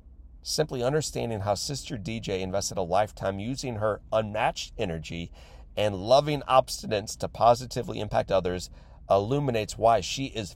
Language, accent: English, American